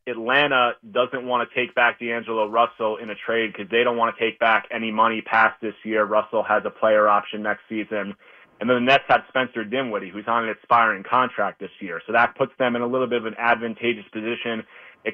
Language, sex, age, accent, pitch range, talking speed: English, male, 30-49, American, 110-125 Hz, 225 wpm